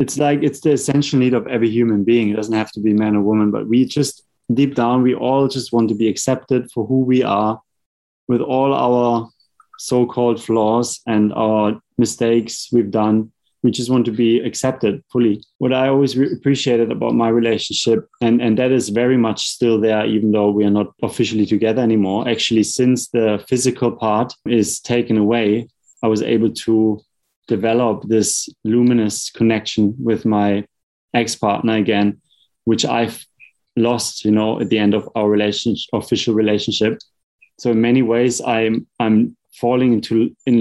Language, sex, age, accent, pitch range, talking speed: English, male, 30-49, German, 110-125 Hz, 170 wpm